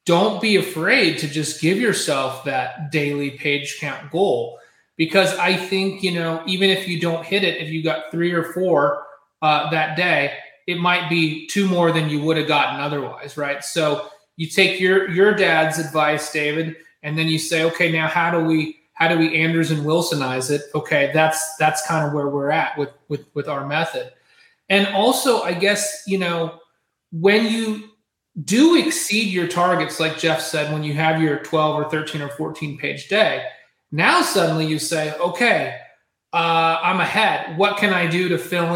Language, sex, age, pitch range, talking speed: English, male, 30-49, 155-180 Hz, 185 wpm